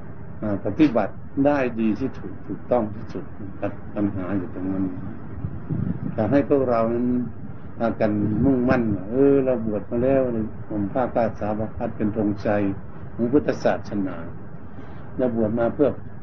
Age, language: 60-79, Thai